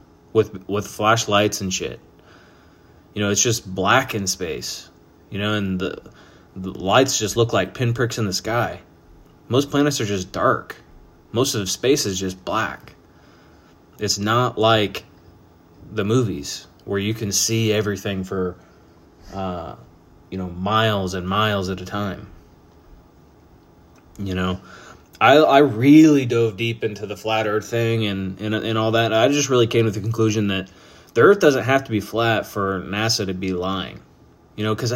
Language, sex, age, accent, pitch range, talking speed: English, male, 20-39, American, 95-110 Hz, 165 wpm